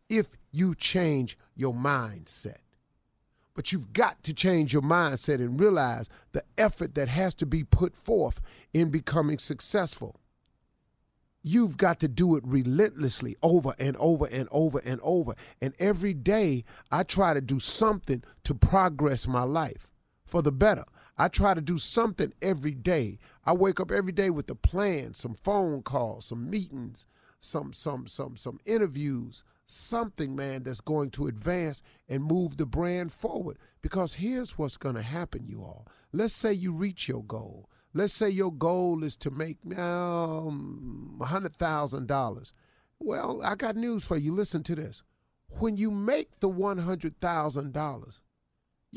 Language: English